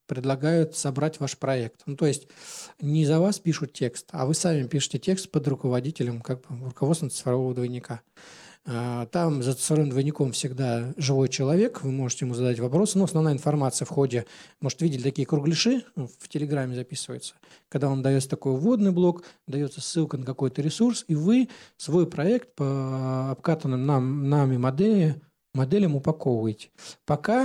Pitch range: 130-165 Hz